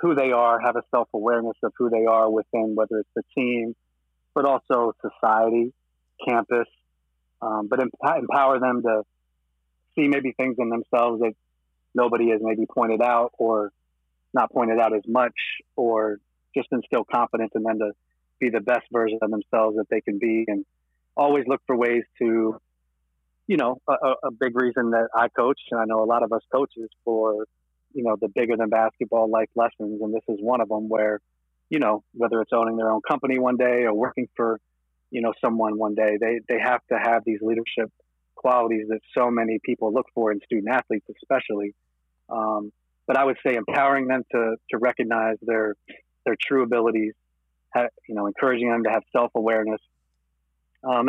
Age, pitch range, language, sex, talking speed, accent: 30-49, 105-120 Hz, English, male, 180 wpm, American